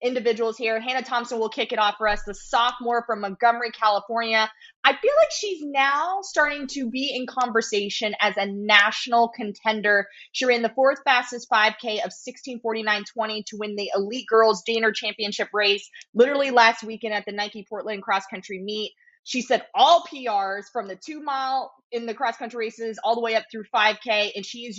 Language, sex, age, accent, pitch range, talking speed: English, female, 20-39, American, 210-250 Hz, 185 wpm